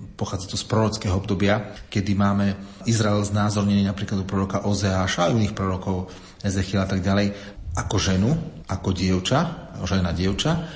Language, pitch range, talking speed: Slovak, 95-115 Hz, 145 wpm